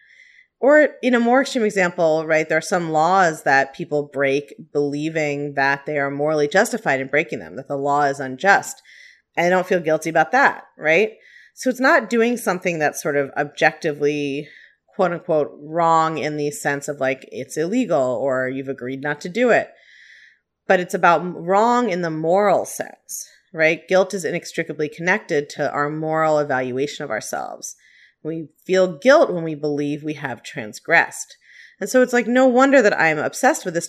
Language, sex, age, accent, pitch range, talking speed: English, female, 30-49, American, 145-195 Hz, 180 wpm